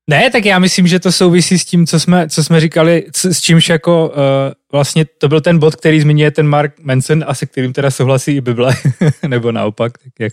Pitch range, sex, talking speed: 125-160 Hz, male, 230 wpm